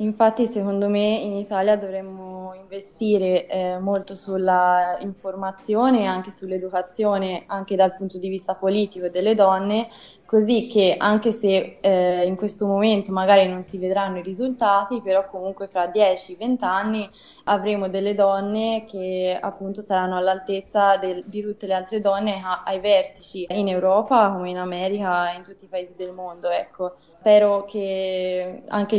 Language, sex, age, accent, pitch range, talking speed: Italian, female, 20-39, native, 185-205 Hz, 150 wpm